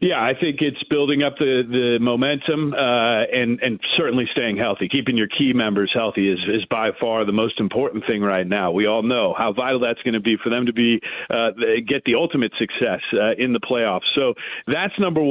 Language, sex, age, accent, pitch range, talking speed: English, male, 40-59, American, 125-155 Hz, 215 wpm